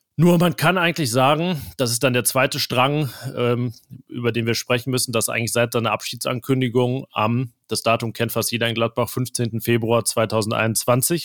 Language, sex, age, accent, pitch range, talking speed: German, male, 30-49, German, 115-135 Hz, 175 wpm